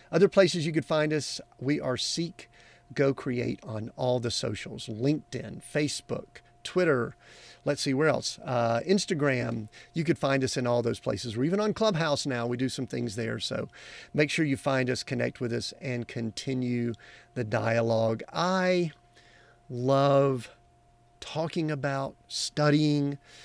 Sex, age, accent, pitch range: male, 50-69, American, 120-150 Hz